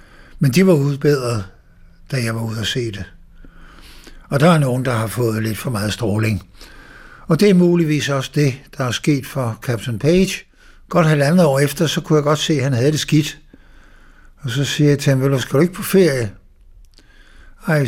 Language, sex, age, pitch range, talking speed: Danish, male, 60-79, 115-160 Hz, 210 wpm